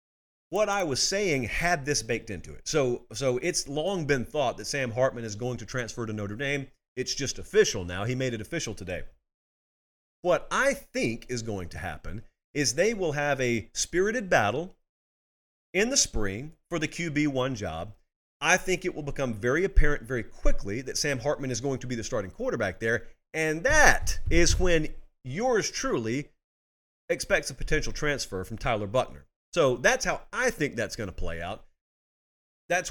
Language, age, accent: English, 40-59, American